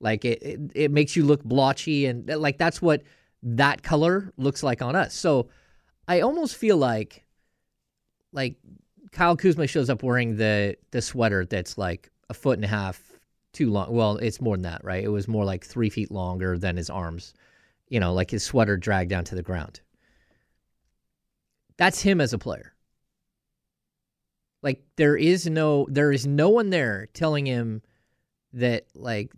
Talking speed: 175 wpm